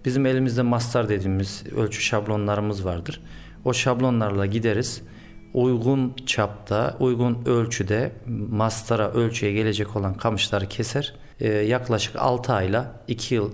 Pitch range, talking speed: 105-125 Hz, 110 wpm